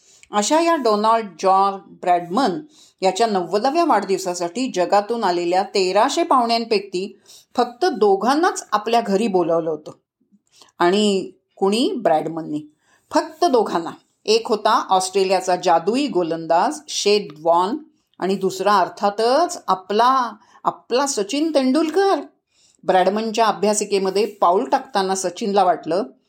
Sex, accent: female, native